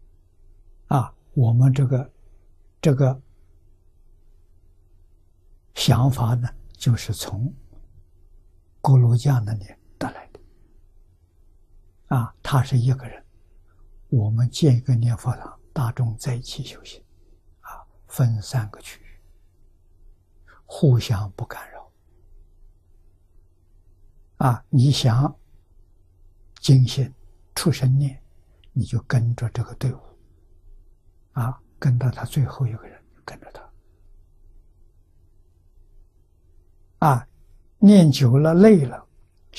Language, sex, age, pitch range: Chinese, male, 60-79, 85-125 Hz